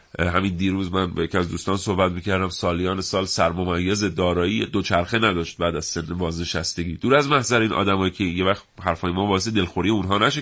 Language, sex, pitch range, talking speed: Persian, male, 90-135 Hz, 190 wpm